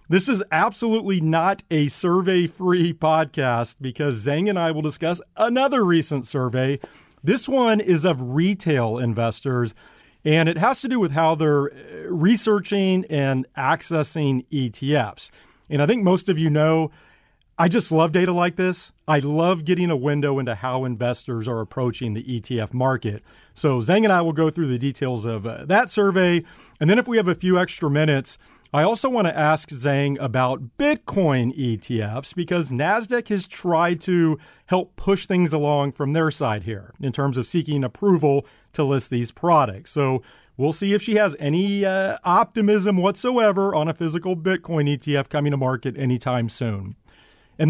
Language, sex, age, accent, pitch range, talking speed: English, male, 40-59, American, 130-185 Hz, 170 wpm